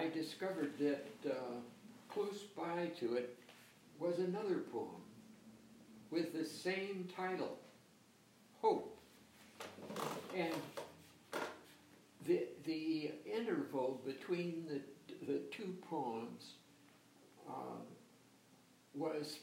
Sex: male